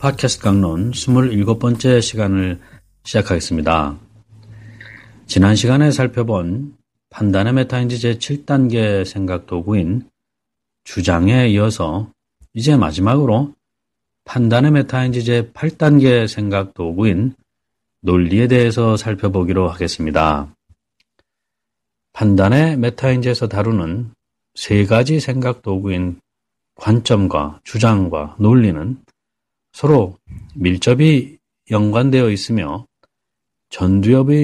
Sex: male